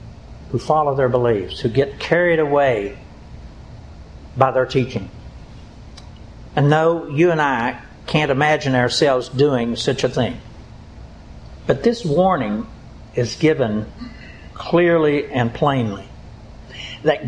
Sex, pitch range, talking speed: male, 120-155 Hz, 110 wpm